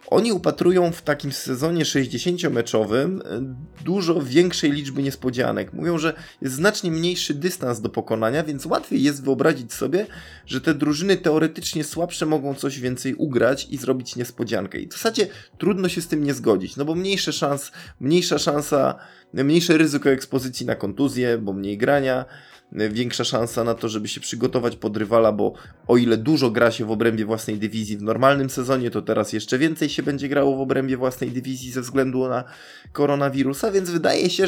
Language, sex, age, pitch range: Polish, male, 20-39, 115-165 Hz